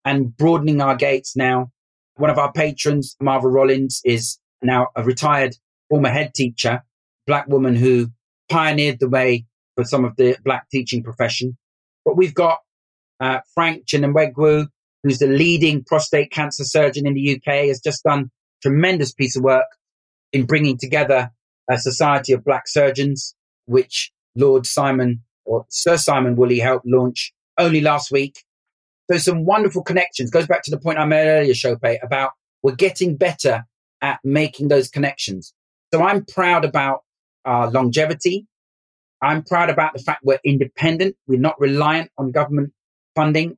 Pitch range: 130-155 Hz